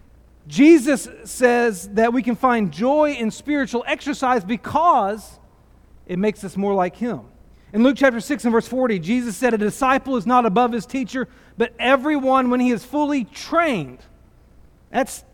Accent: American